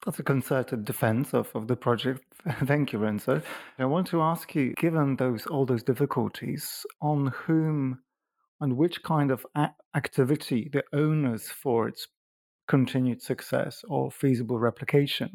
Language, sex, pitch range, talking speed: English, male, 125-150 Hz, 150 wpm